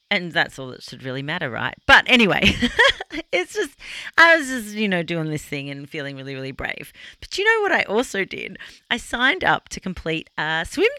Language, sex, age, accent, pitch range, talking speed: English, female, 40-59, Australian, 150-220 Hz, 215 wpm